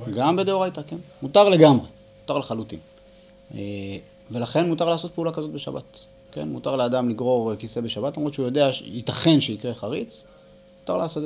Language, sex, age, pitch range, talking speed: Hebrew, male, 30-49, 115-165 Hz, 145 wpm